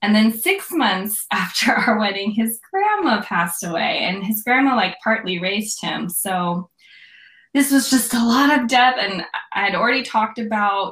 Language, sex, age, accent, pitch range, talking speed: English, female, 10-29, American, 185-235 Hz, 175 wpm